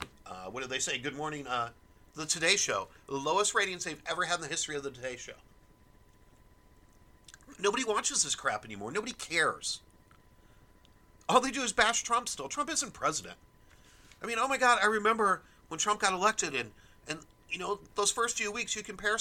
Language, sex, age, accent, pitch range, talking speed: English, male, 40-59, American, 175-230 Hz, 195 wpm